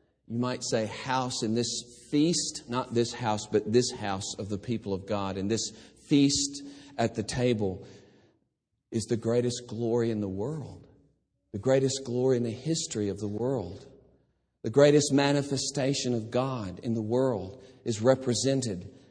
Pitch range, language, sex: 115-140 Hz, English, male